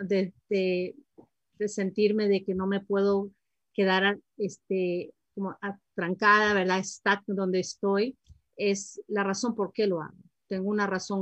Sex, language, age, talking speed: female, Spanish, 40-59, 150 wpm